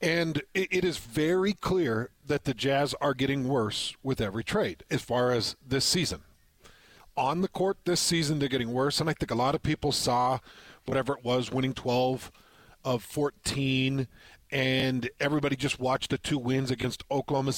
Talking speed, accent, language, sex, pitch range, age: 180 wpm, American, English, male, 125-155 Hz, 40-59